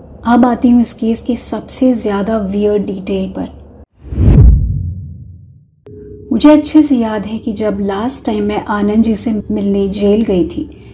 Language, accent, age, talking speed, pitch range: Hindi, native, 30-49, 155 wpm, 210-270 Hz